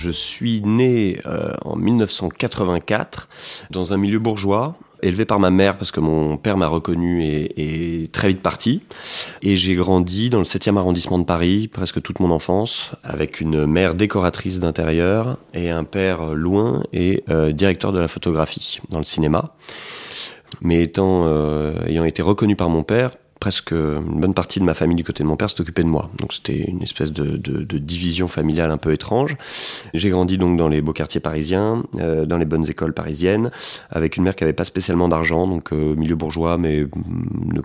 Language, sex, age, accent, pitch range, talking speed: French, male, 30-49, French, 80-95 Hz, 190 wpm